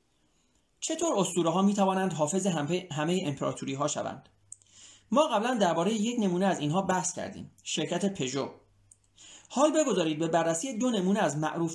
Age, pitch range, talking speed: 30-49, 140-200 Hz, 150 wpm